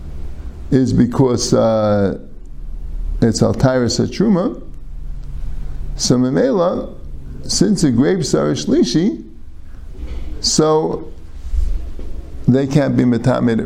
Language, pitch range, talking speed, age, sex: English, 75-130 Hz, 80 wpm, 50-69, male